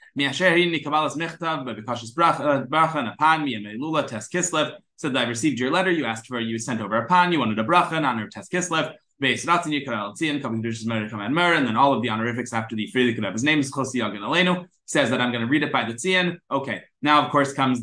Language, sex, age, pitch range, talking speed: English, male, 20-39, 130-175 Hz, 175 wpm